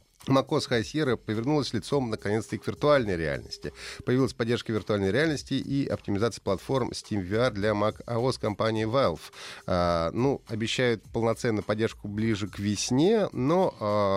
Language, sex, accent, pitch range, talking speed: Russian, male, native, 90-130 Hz, 135 wpm